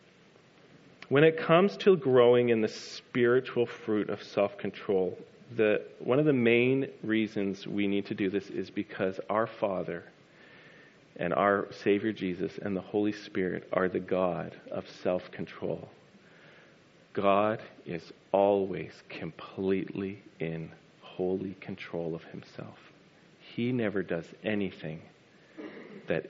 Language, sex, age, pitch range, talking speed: English, male, 40-59, 95-125 Hz, 120 wpm